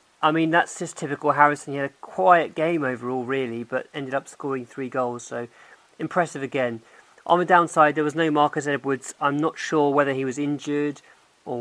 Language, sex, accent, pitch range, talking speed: English, male, British, 130-155 Hz, 195 wpm